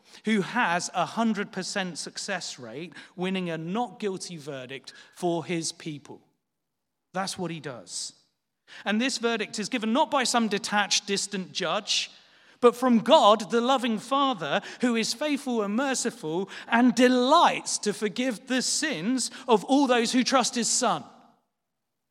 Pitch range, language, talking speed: 185-240 Hz, English, 145 wpm